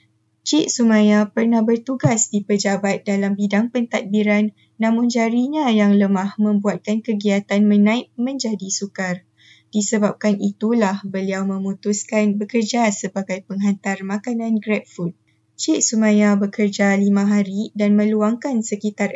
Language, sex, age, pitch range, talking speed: Malay, female, 20-39, 195-225 Hz, 115 wpm